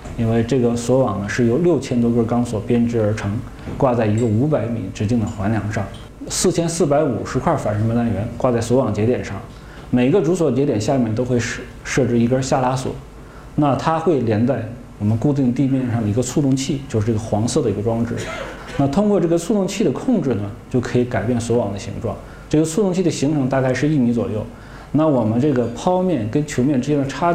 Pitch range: 115-145 Hz